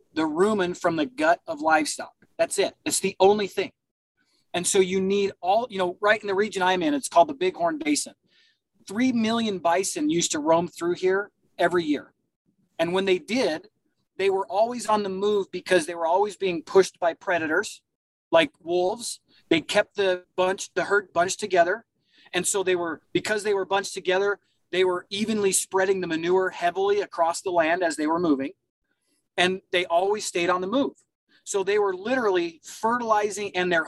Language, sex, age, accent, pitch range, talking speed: English, male, 30-49, American, 180-250 Hz, 190 wpm